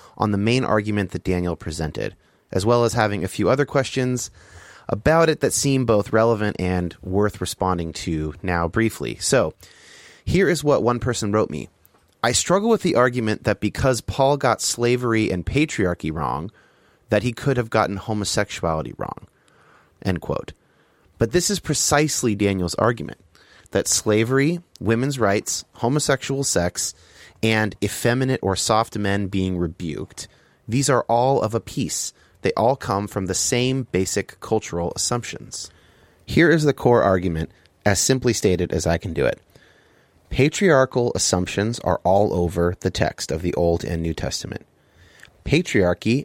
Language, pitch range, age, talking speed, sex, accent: English, 90-120 Hz, 30-49, 155 wpm, male, American